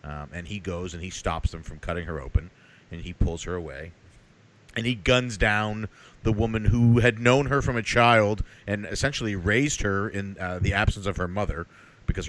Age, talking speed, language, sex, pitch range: 40-59, 205 wpm, English, male, 85-110 Hz